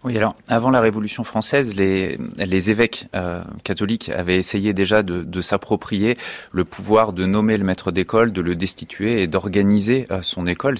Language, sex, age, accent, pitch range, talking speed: French, male, 30-49, French, 90-110 Hz, 180 wpm